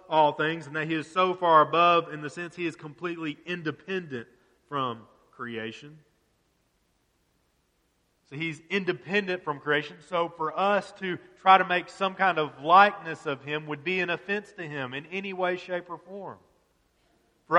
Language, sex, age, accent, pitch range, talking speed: English, male, 30-49, American, 135-180 Hz, 165 wpm